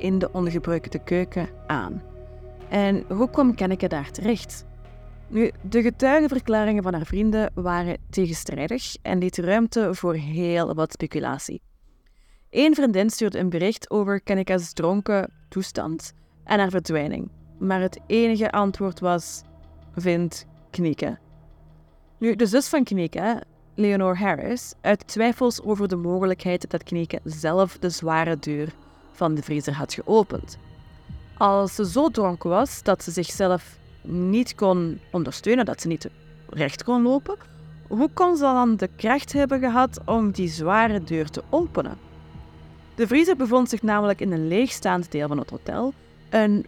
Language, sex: Dutch, female